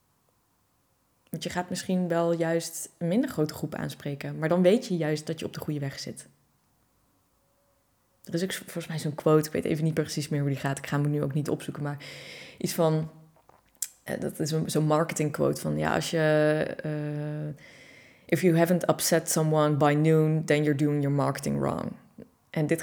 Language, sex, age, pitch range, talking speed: Dutch, female, 20-39, 140-160 Hz, 195 wpm